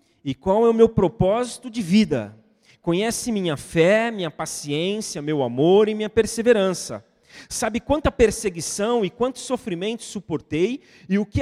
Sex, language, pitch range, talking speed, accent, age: male, Portuguese, 145-220 Hz, 145 wpm, Brazilian, 40-59